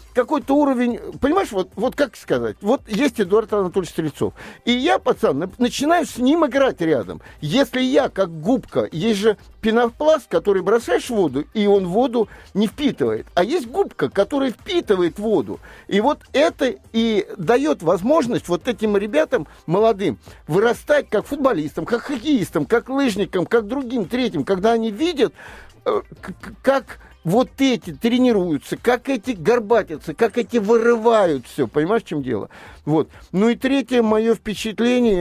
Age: 50-69